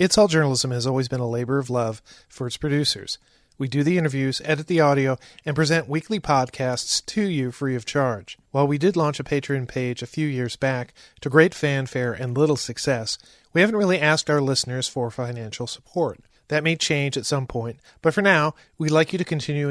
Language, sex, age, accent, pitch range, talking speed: English, male, 40-59, American, 125-155 Hz, 210 wpm